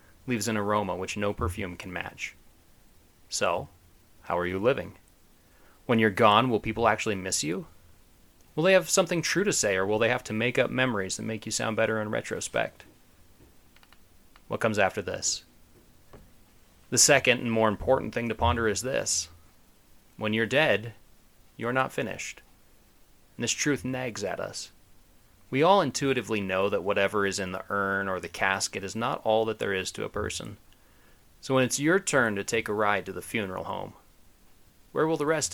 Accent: American